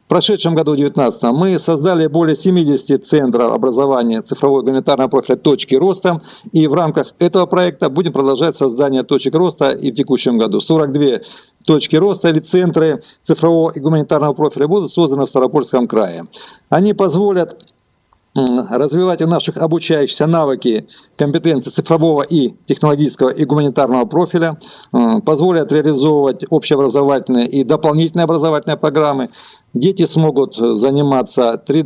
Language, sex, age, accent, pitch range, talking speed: Russian, male, 50-69, native, 140-170 Hz, 130 wpm